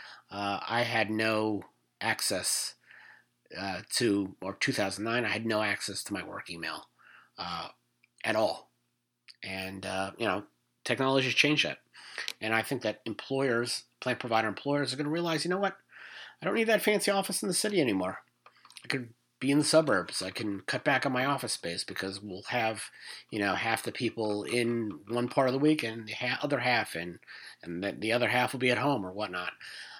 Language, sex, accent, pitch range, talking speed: English, male, American, 100-140 Hz, 190 wpm